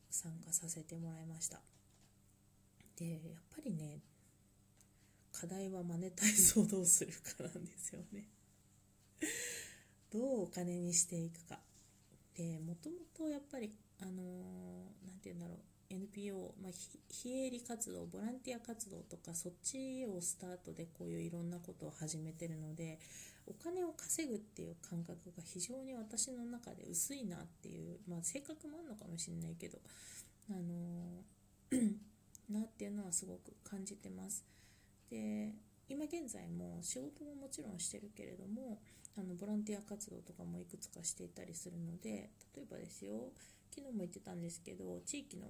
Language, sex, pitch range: Japanese, female, 160-205 Hz